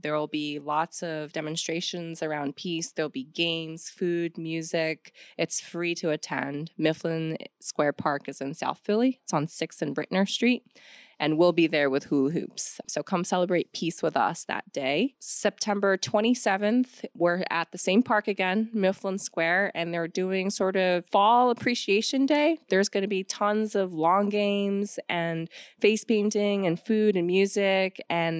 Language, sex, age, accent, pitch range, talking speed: English, female, 20-39, American, 155-200 Hz, 165 wpm